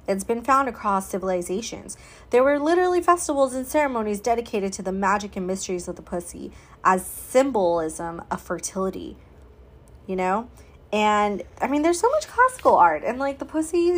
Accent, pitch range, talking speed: American, 180-230 Hz, 165 wpm